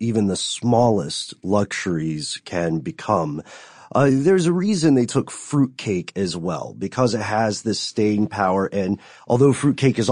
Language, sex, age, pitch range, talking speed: English, male, 40-59, 100-135 Hz, 150 wpm